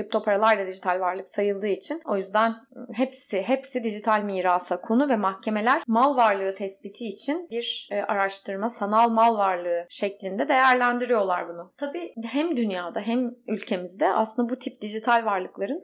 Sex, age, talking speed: female, 20-39, 140 wpm